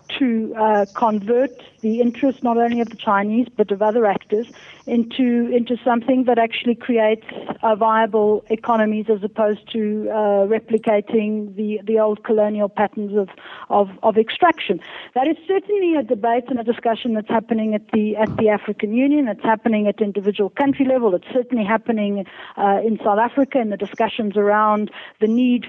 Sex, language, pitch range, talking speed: female, English, 205-240 Hz, 170 wpm